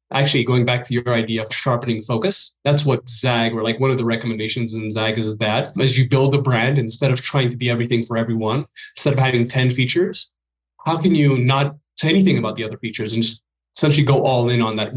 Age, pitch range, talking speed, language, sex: 20-39, 115-135 Hz, 235 wpm, English, male